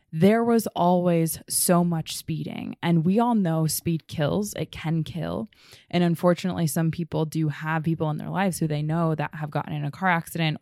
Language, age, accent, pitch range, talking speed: English, 20-39, American, 160-190 Hz, 200 wpm